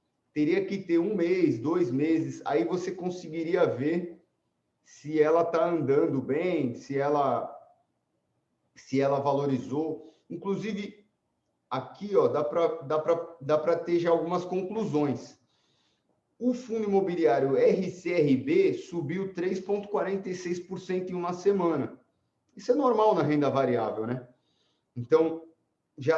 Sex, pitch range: male, 145-185 Hz